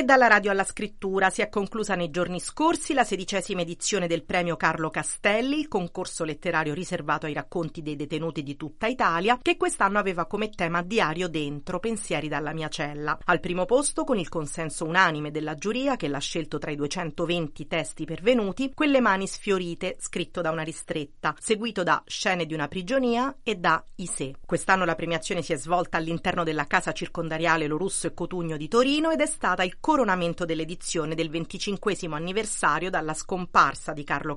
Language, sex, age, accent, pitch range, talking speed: Italian, female, 40-59, native, 155-195 Hz, 175 wpm